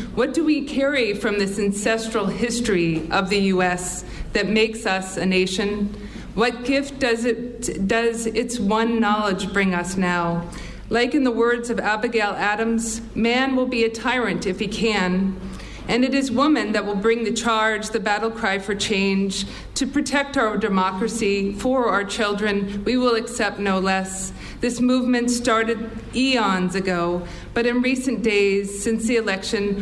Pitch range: 200-245 Hz